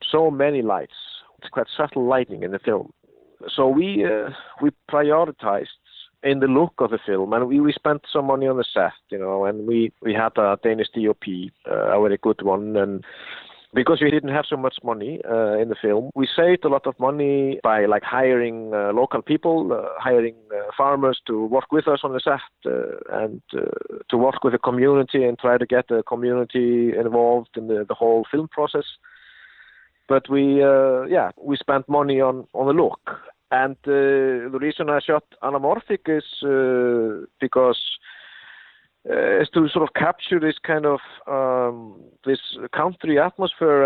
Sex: male